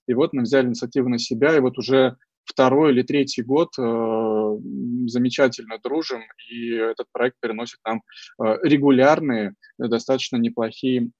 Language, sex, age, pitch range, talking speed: Russian, male, 20-39, 120-145 Hz, 130 wpm